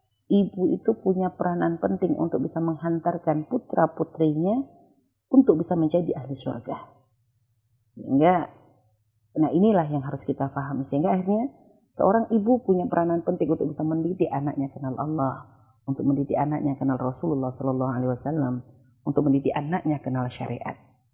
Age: 40-59